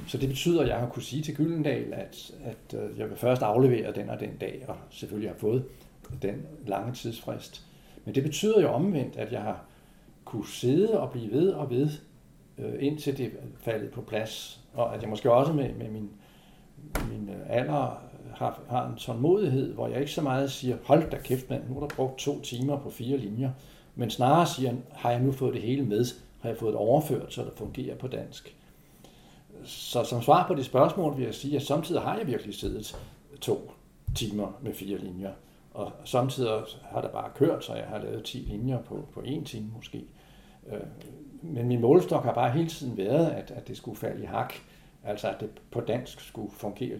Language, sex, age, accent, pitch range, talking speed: Danish, male, 60-79, native, 115-145 Hz, 200 wpm